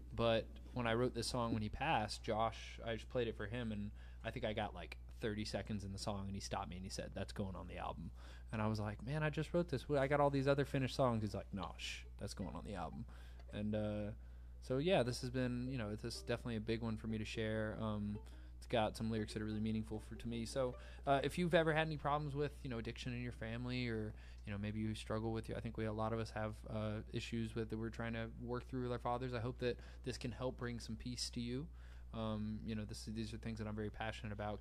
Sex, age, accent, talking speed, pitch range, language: male, 20-39, American, 275 wpm, 105-120 Hz, English